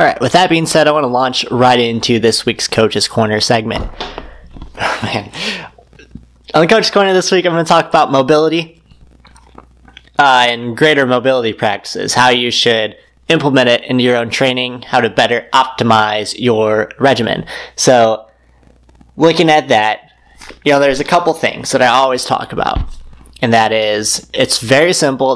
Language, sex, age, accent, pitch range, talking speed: English, male, 20-39, American, 110-145 Hz, 170 wpm